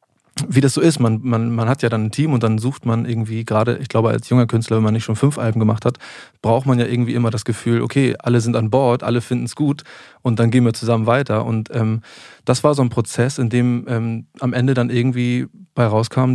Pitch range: 110-125 Hz